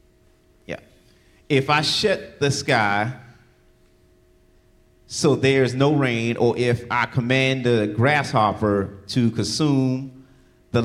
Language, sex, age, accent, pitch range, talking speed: English, male, 40-59, American, 110-130 Hz, 100 wpm